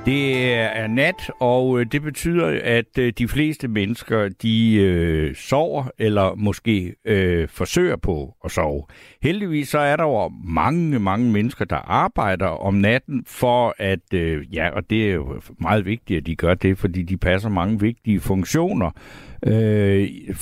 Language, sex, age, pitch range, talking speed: Danish, male, 60-79, 100-130 Hz, 155 wpm